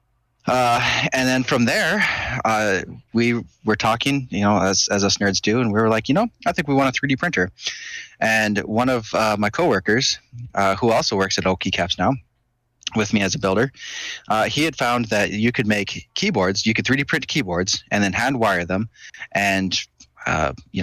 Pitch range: 100-125 Hz